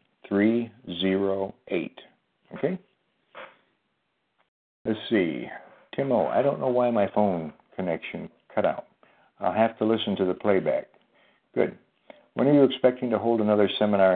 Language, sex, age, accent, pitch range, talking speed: English, male, 60-79, American, 90-110 Hz, 135 wpm